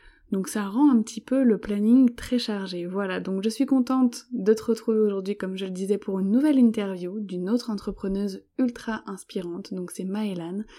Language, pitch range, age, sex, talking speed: French, 195-240 Hz, 20-39, female, 195 wpm